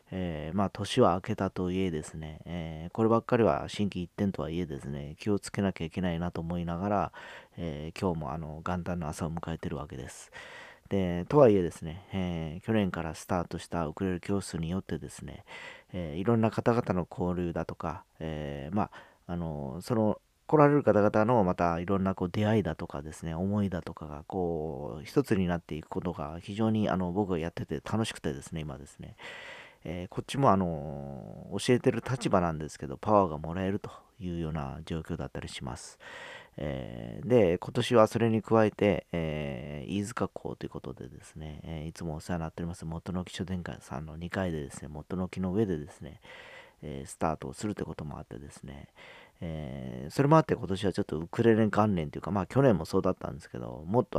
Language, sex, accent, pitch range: Japanese, male, native, 80-100 Hz